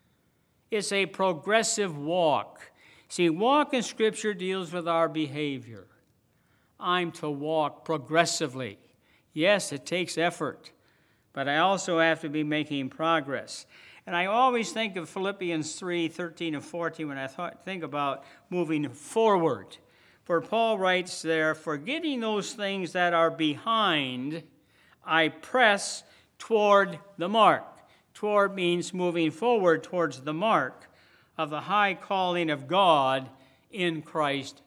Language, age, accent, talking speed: English, 60-79, American, 130 wpm